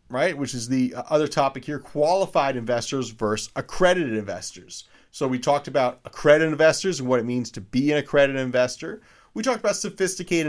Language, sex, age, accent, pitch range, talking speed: English, male, 30-49, American, 115-145 Hz, 175 wpm